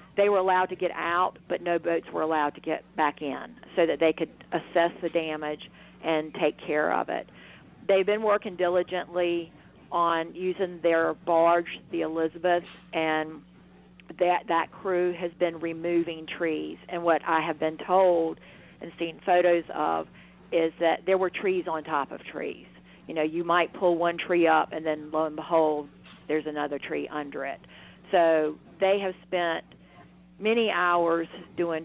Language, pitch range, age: English, 155-175 Hz, 50-69